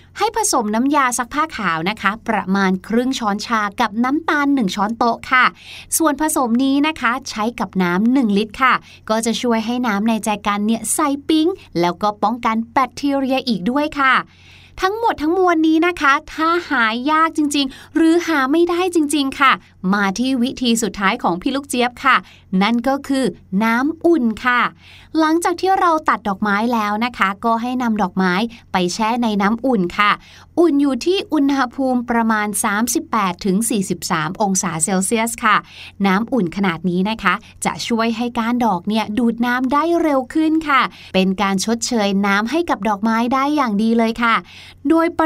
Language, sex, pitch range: Thai, female, 210-290 Hz